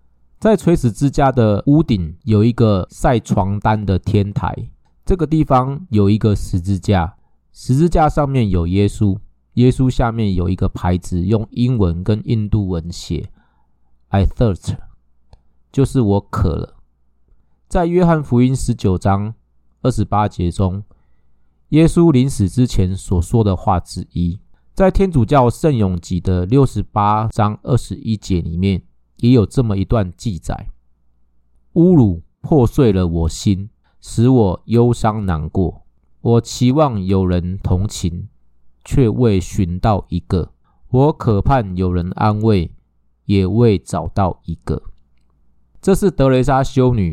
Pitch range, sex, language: 90-125 Hz, male, Chinese